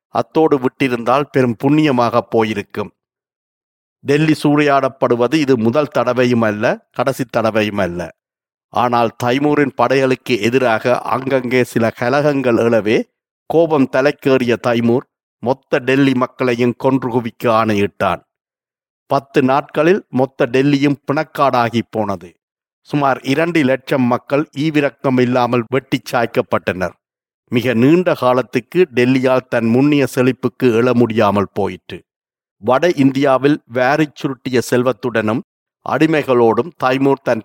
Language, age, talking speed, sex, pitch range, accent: Tamil, 50-69, 100 wpm, male, 120-140 Hz, native